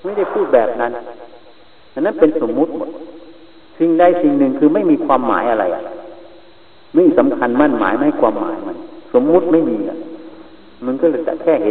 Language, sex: Thai, male